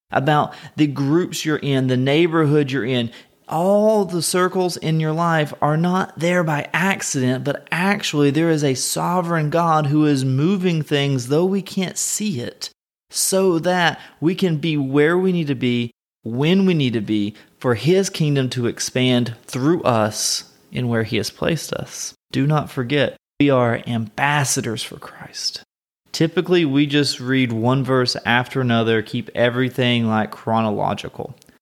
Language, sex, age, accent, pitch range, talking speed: English, male, 30-49, American, 125-165 Hz, 160 wpm